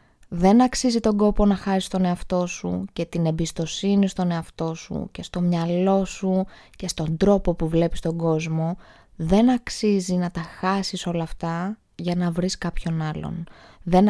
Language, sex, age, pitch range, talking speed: Greek, female, 20-39, 170-210 Hz, 165 wpm